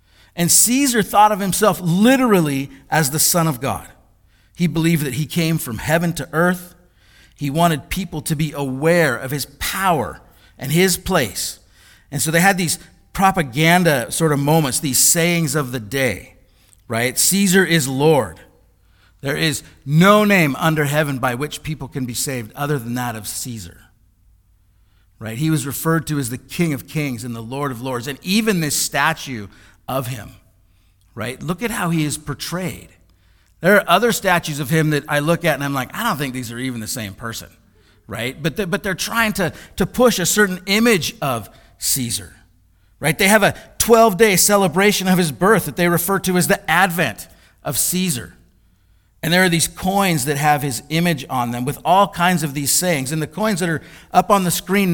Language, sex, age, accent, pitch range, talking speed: English, male, 50-69, American, 120-180 Hz, 190 wpm